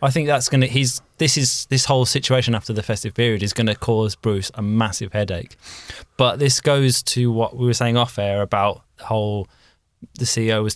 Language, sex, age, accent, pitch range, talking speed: English, male, 20-39, British, 105-125 Hz, 220 wpm